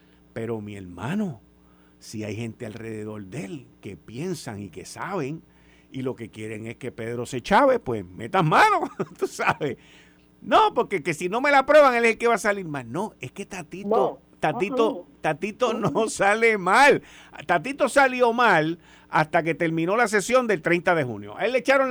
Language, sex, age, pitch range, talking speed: Spanish, male, 50-69, 125-205 Hz, 190 wpm